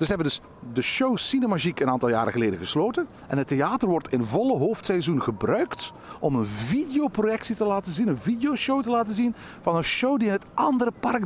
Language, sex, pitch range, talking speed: Dutch, male, 145-215 Hz, 210 wpm